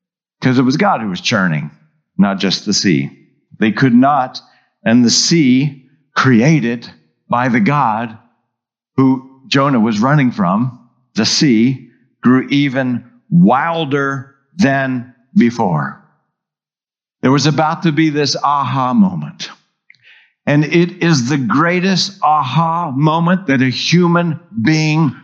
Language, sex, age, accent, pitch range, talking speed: English, male, 50-69, American, 135-185 Hz, 125 wpm